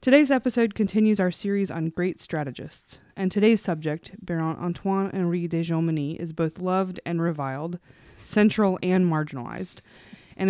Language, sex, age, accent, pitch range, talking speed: English, female, 20-39, American, 155-185 Hz, 135 wpm